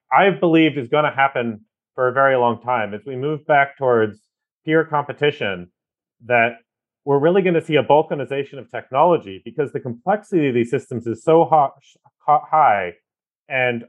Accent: American